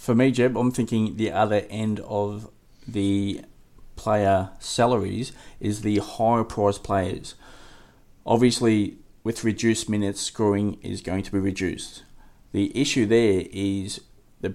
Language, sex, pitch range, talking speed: English, male, 95-110 Hz, 130 wpm